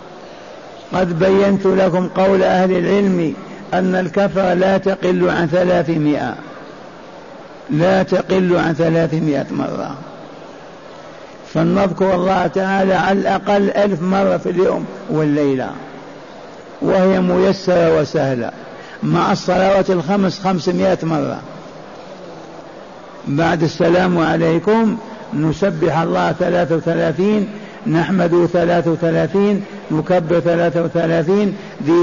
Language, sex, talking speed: Arabic, male, 90 wpm